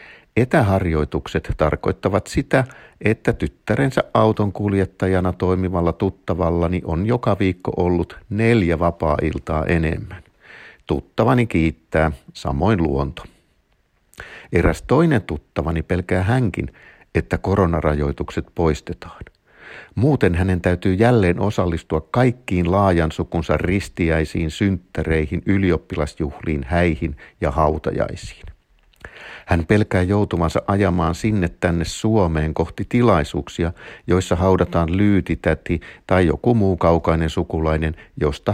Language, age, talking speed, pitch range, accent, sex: Finnish, 50-69, 90 wpm, 80-95 Hz, native, male